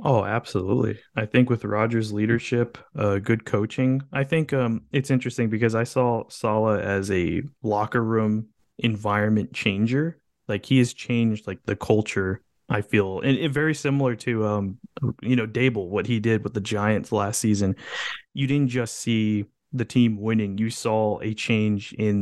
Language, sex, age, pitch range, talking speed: English, male, 20-39, 100-120 Hz, 170 wpm